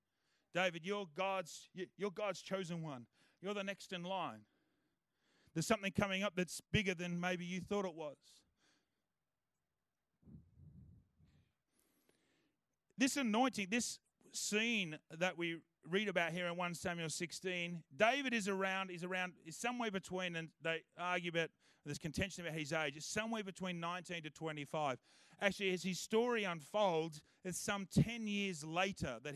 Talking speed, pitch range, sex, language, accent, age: 145 wpm, 170-205 Hz, male, English, Australian, 30-49